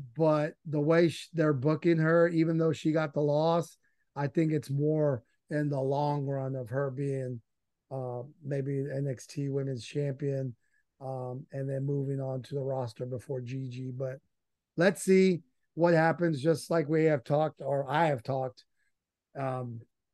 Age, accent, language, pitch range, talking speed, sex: 30-49, American, English, 130-150 Hz, 160 wpm, male